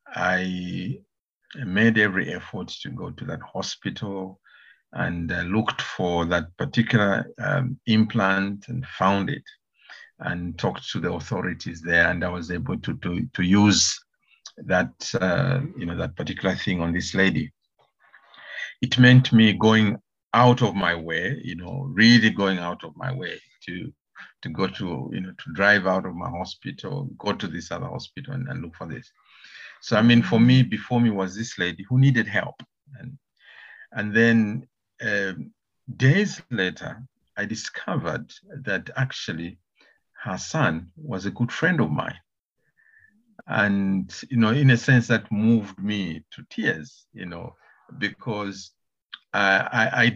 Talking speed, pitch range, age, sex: 155 wpm, 95-120 Hz, 50-69, male